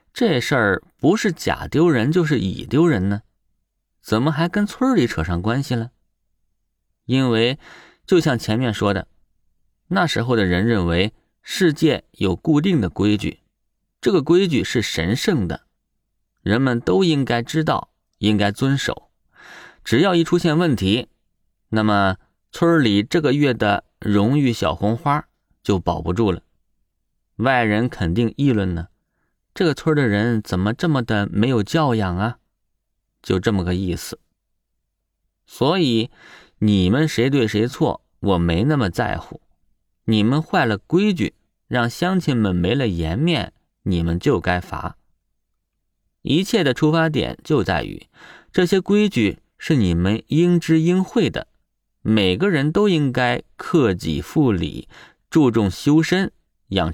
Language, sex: Chinese, male